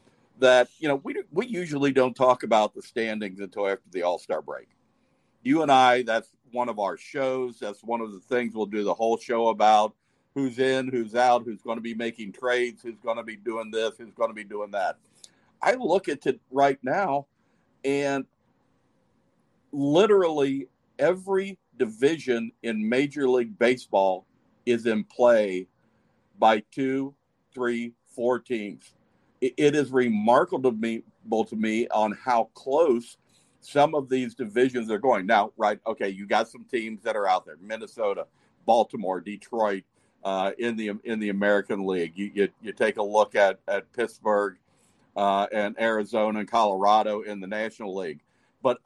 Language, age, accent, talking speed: English, 50-69, American, 165 wpm